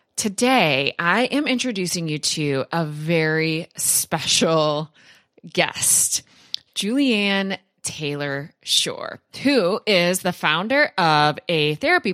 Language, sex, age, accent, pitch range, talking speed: English, female, 20-39, American, 160-215 Hz, 95 wpm